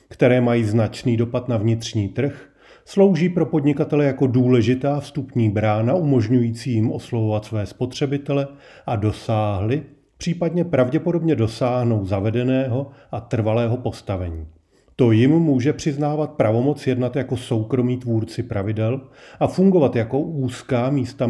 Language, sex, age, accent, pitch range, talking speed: Czech, male, 40-59, native, 110-140 Hz, 120 wpm